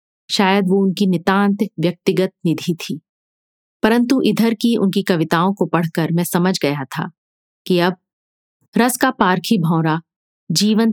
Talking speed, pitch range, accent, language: 135 wpm, 170-220 Hz, native, Hindi